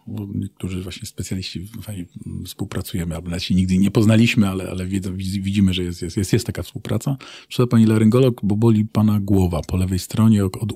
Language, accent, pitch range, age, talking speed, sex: Polish, native, 95-125 Hz, 40-59, 165 wpm, male